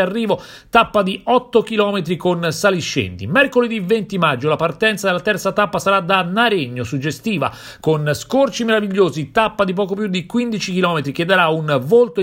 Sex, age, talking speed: male, 40-59, 160 wpm